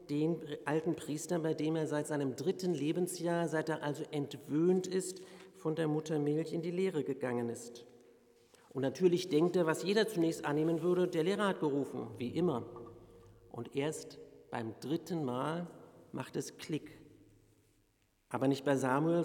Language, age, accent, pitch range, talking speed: German, 50-69, German, 135-165 Hz, 160 wpm